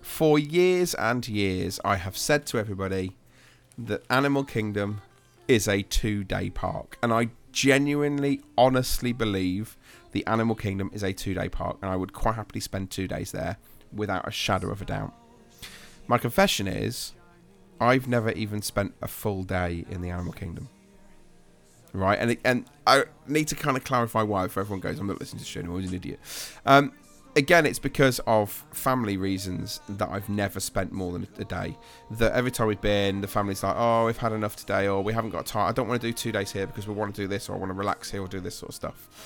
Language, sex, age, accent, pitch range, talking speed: English, male, 30-49, British, 95-125 Hz, 210 wpm